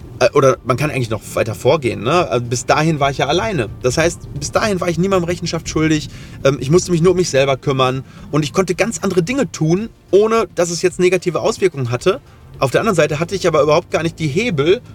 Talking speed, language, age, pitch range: 225 wpm, German, 30-49, 125-170 Hz